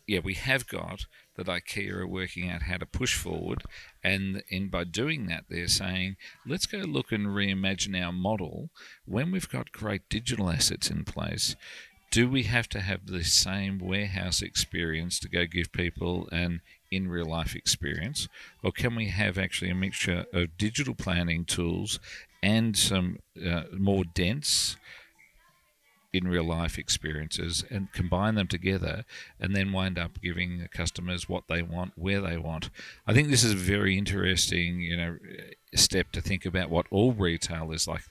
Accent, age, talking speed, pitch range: Australian, 50-69, 165 wpm, 85-100 Hz